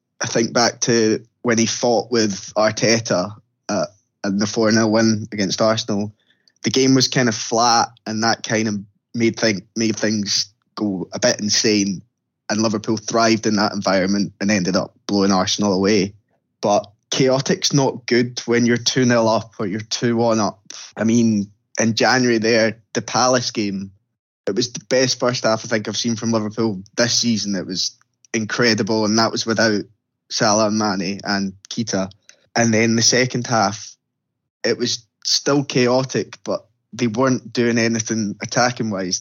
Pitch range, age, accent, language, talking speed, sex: 100-115 Hz, 10-29, British, English, 160 wpm, male